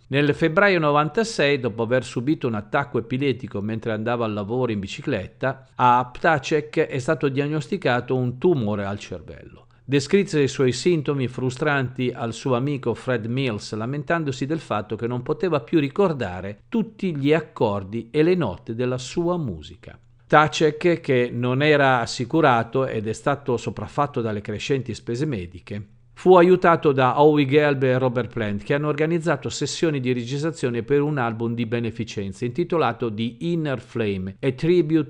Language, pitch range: Italian, 115-150 Hz